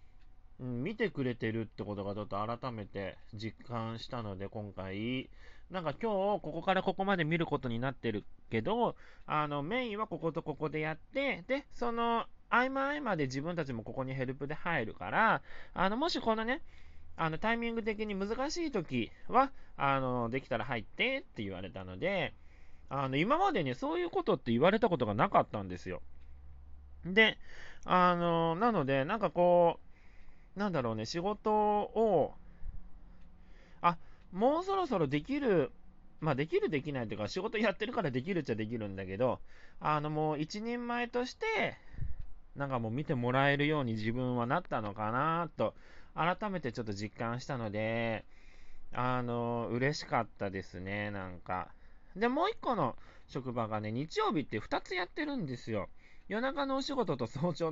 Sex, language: male, Japanese